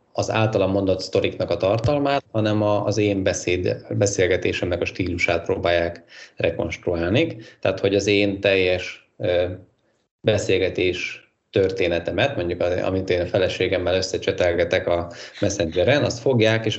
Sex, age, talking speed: male, 20-39, 125 wpm